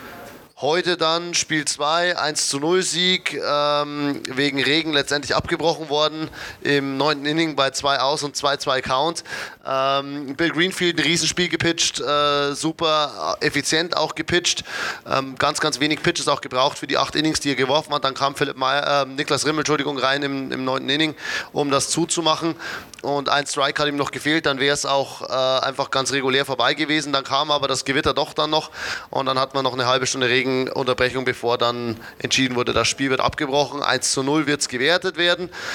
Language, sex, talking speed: German, male, 190 wpm